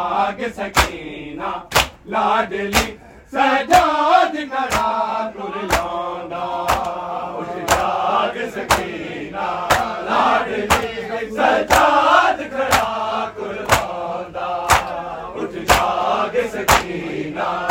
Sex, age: male, 40-59